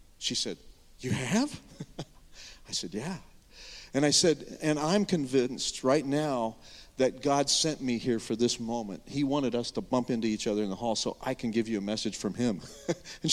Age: 50-69